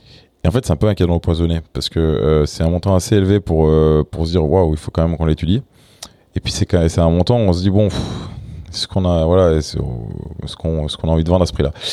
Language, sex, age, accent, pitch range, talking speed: English, male, 20-39, French, 80-100 Hz, 285 wpm